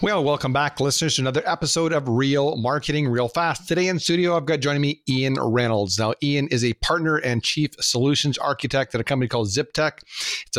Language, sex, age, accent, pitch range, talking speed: English, male, 40-59, American, 120-145 Hz, 205 wpm